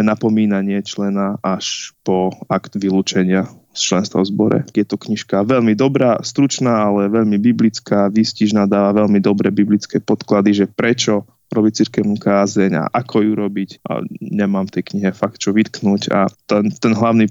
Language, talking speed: Slovak, 160 wpm